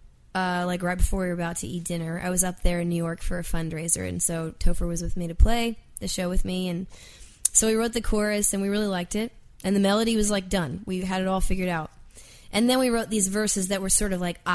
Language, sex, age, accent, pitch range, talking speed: English, female, 20-39, American, 170-200 Hz, 270 wpm